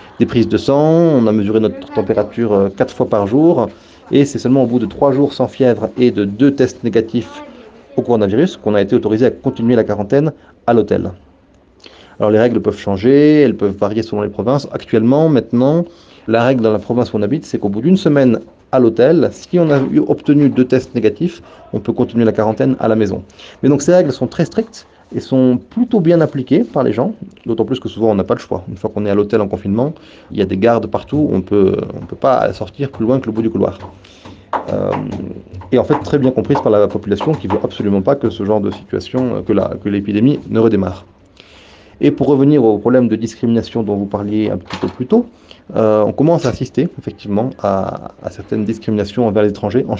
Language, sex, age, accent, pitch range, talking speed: French, male, 30-49, French, 105-135 Hz, 230 wpm